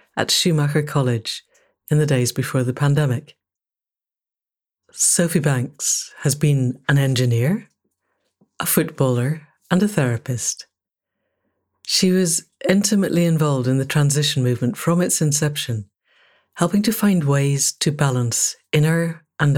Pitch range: 135-170 Hz